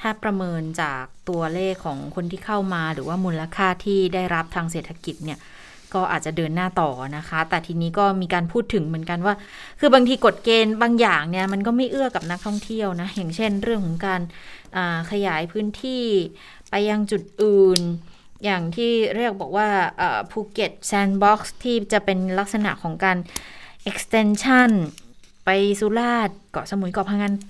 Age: 20-39